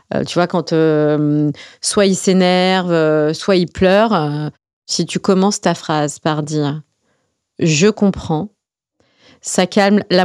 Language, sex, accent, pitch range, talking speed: French, female, French, 150-190 Hz, 140 wpm